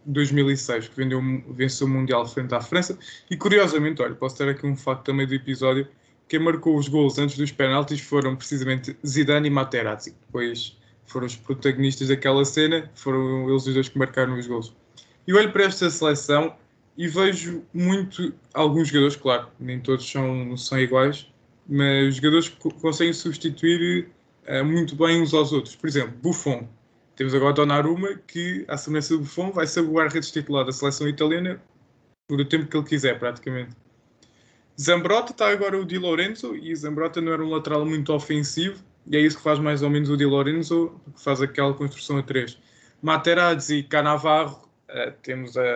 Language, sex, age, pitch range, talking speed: Portuguese, male, 20-39, 130-160 Hz, 175 wpm